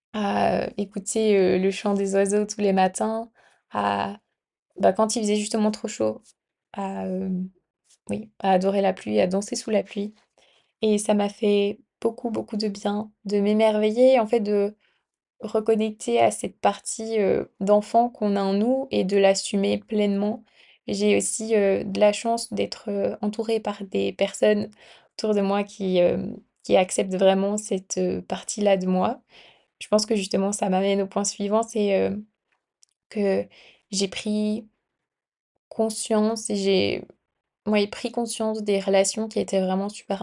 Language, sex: French, female